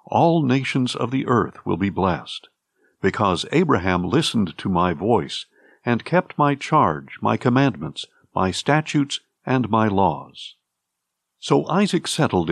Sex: male